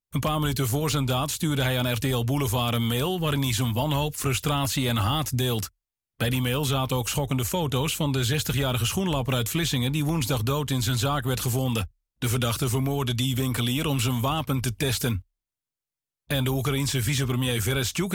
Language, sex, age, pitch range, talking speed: Dutch, male, 40-59, 120-145 Hz, 190 wpm